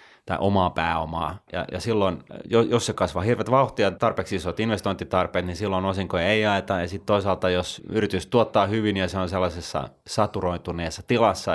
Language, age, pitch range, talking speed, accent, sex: Finnish, 30-49, 85-105 Hz, 165 wpm, native, male